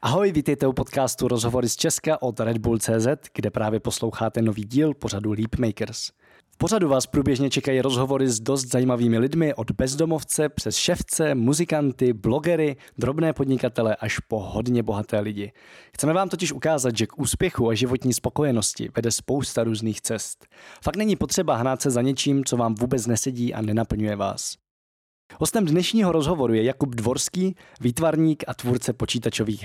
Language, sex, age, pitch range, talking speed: Czech, male, 20-39, 115-150 Hz, 160 wpm